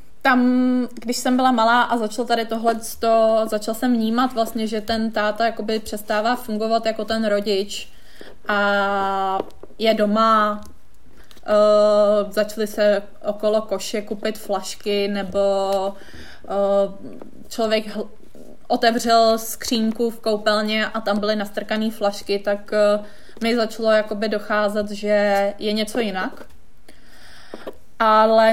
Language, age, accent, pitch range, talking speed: Czech, 20-39, native, 205-225 Hz, 120 wpm